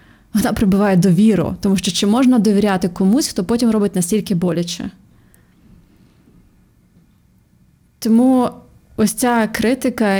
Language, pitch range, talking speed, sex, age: Ukrainian, 180-215 Hz, 110 wpm, female, 20-39